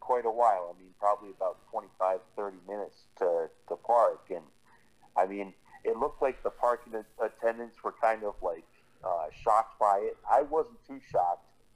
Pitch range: 95-130 Hz